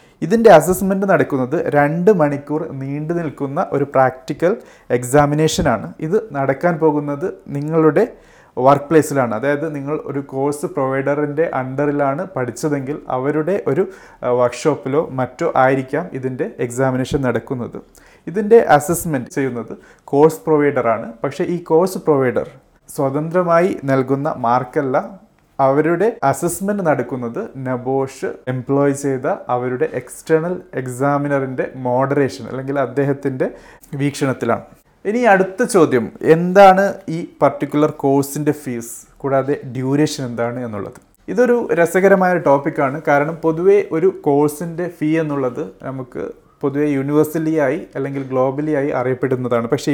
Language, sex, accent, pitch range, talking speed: Malayalam, male, native, 135-160 Hz, 105 wpm